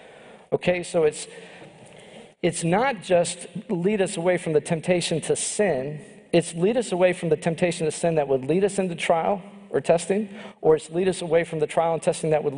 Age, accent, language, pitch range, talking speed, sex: 50-69, American, English, 160-205 Hz, 205 wpm, male